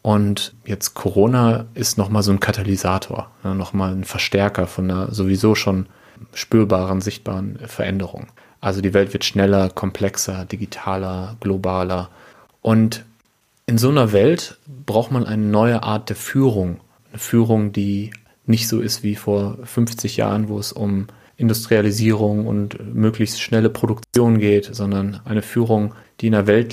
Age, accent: 30-49, German